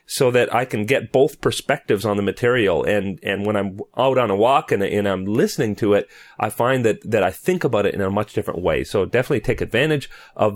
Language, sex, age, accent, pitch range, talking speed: English, male, 40-59, American, 100-140 Hz, 240 wpm